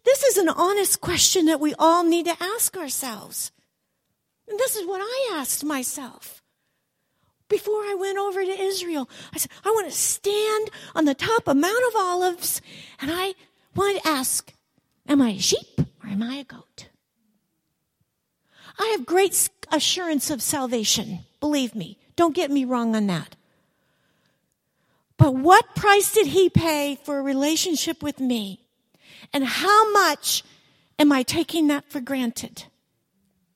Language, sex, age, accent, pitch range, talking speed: English, female, 50-69, American, 255-385 Hz, 155 wpm